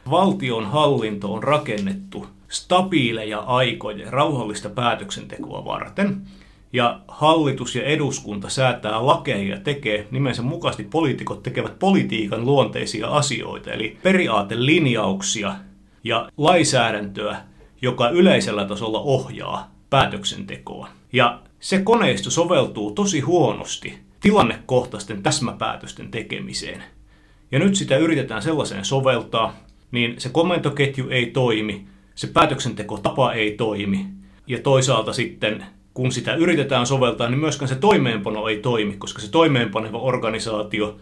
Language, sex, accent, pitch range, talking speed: Finnish, male, native, 105-140 Hz, 110 wpm